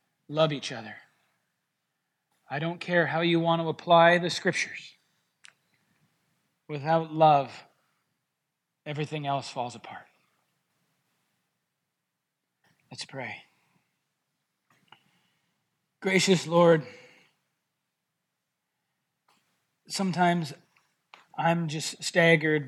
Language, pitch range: English, 150-170 Hz